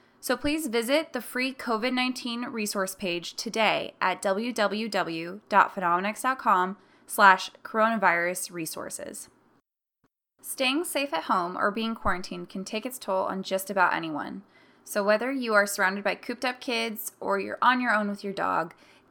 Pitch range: 195-250 Hz